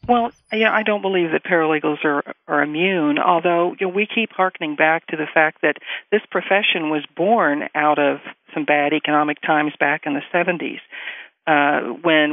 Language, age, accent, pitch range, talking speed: English, 50-69, American, 150-185 Hz, 180 wpm